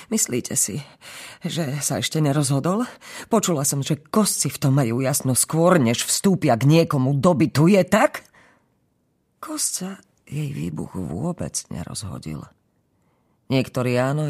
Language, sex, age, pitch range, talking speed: Slovak, female, 40-59, 110-155 Hz, 120 wpm